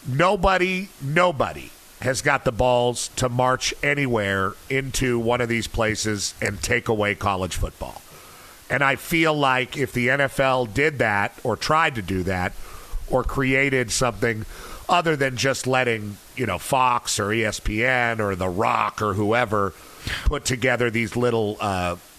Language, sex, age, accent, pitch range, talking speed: English, male, 50-69, American, 105-130 Hz, 150 wpm